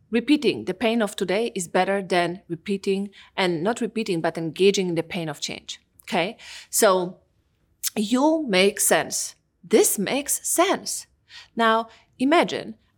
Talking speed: 135 wpm